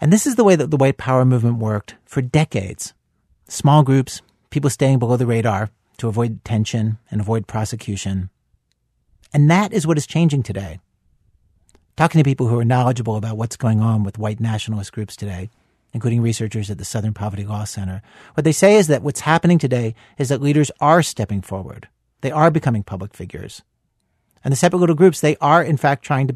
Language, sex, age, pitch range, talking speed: English, male, 50-69, 105-140 Hz, 195 wpm